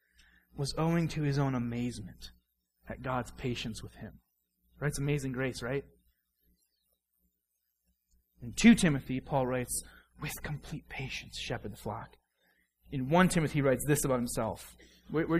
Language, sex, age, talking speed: English, male, 30-49, 145 wpm